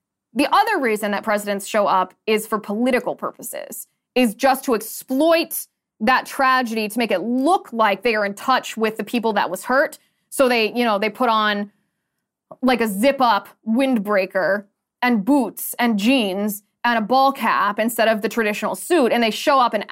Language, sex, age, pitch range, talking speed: English, female, 20-39, 210-265 Hz, 185 wpm